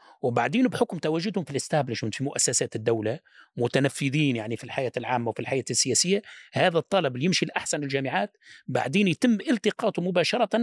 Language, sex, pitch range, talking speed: Arabic, male, 140-210 Hz, 145 wpm